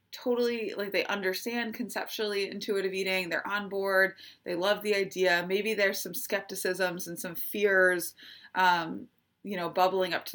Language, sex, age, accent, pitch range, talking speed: English, female, 20-39, American, 175-210 Hz, 155 wpm